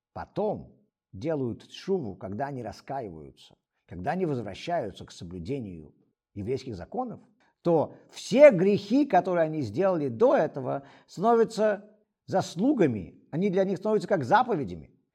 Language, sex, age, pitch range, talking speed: Russian, male, 50-69, 130-215 Hz, 115 wpm